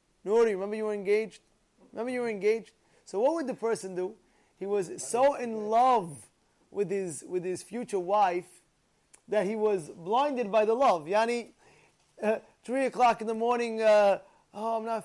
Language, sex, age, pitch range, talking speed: English, male, 20-39, 190-250 Hz, 175 wpm